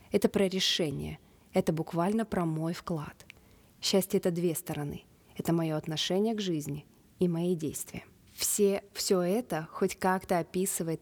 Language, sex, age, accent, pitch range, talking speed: Russian, female, 20-39, native, 160-185 Hz, 145 wpm